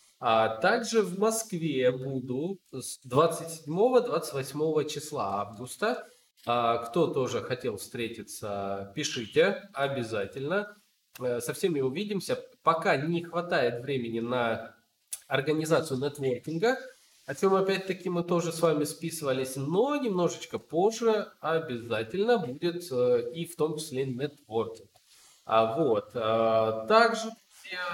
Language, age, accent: Russian, 20-39, native